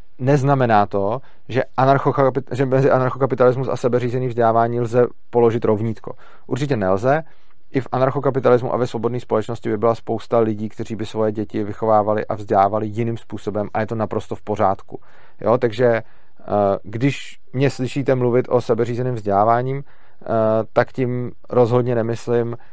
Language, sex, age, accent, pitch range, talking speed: Czech, male, 30-49, native, 110-125 Hz, 135 wpm